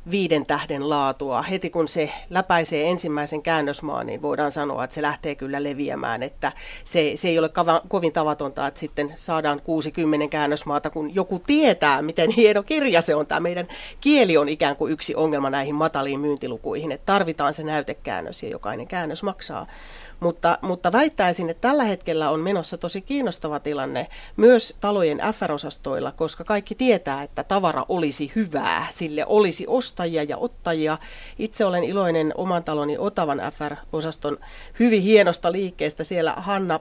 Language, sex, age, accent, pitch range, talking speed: Finnish, female, 40-59, native, 150-195 Hz, 150 wpm